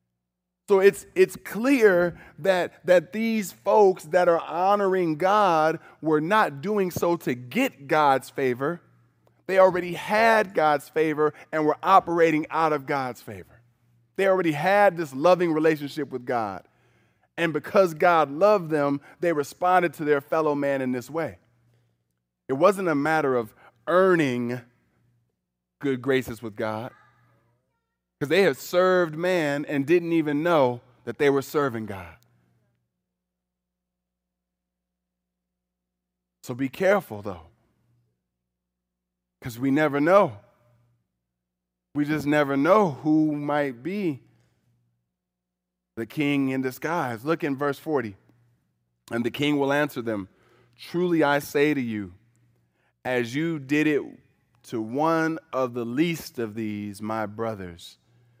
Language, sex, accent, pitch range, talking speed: English, male, American, 100-165 Hz, 130 wpm